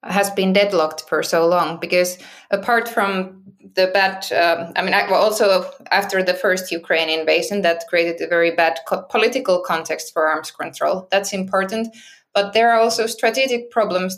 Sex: female